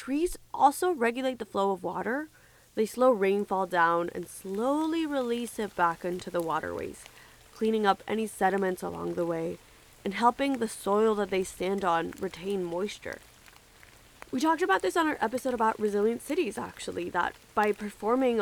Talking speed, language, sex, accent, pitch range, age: 165 wpm, English, female, American, 175-240 Hz, 20-39